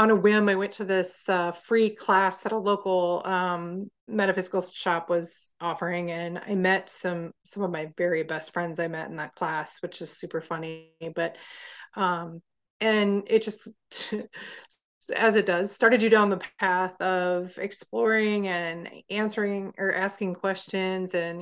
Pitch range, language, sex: 175-205 Hz, English, female